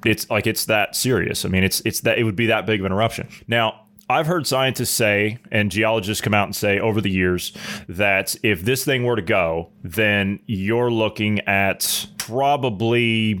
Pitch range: 105-120 Hz